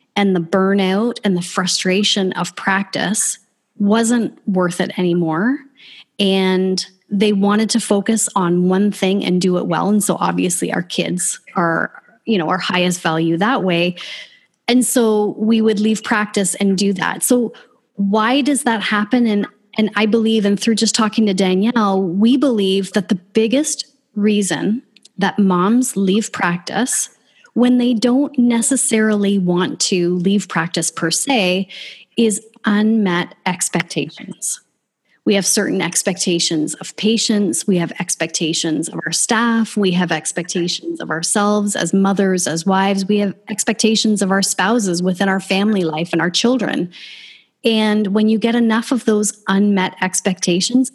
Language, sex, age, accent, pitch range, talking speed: English, female, 30-49, American, 185-220 Hz, 150 wpm